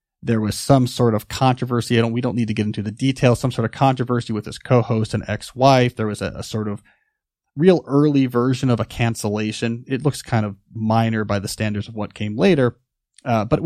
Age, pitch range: 30-49, 110-140 Hz